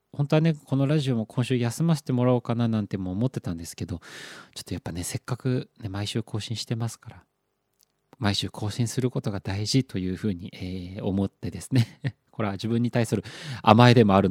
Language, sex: Japanese, male